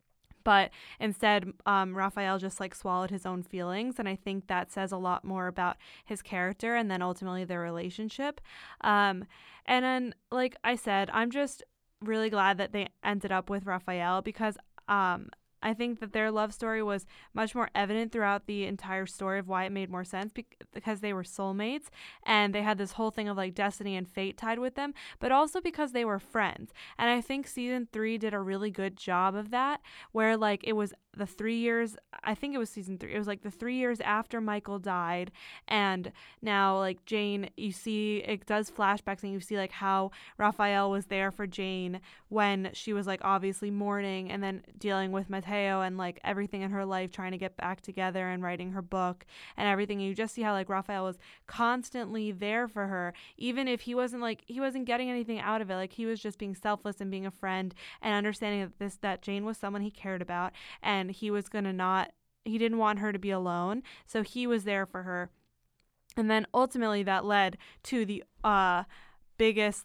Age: 10-29